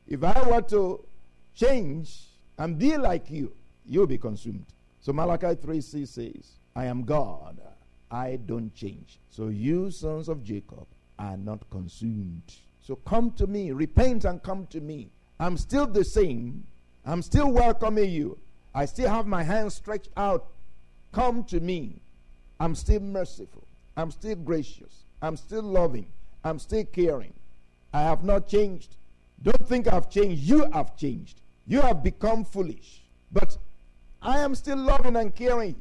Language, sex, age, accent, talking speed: English, male, 50-69, Nigerian, 150 wpm